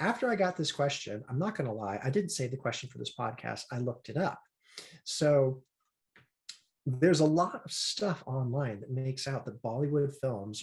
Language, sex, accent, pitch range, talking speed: English, male, American, 115-155 Hz, 200 wpm